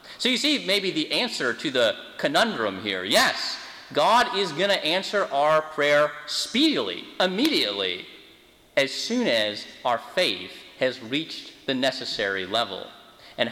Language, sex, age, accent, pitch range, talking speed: English, male, 30-49, American, 130-165 Hz, 140 wpm